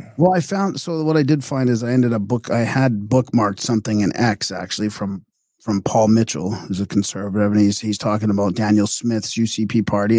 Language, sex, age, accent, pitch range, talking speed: English, male, 40-59, American, 110-130 Hz, 210 wpm